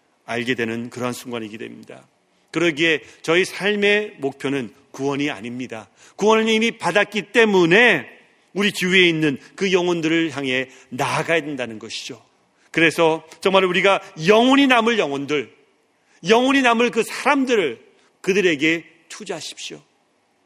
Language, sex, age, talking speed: English, male, 40-59, 105 wpm